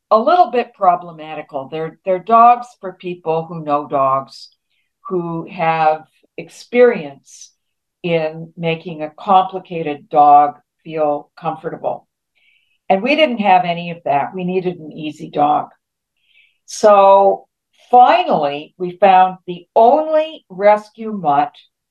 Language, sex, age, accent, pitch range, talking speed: English, female, 60-79, American, 155-205 Hz, 115 wpm